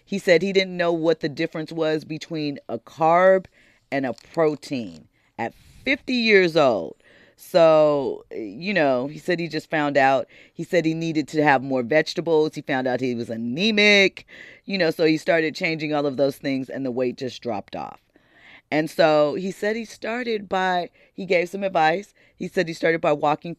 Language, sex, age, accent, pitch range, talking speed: English, female, 40-59, American, 145-185 Hz, 190 wpm